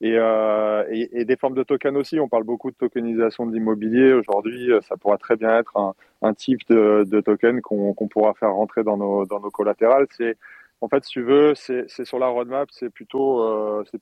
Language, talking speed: English, 225 wpm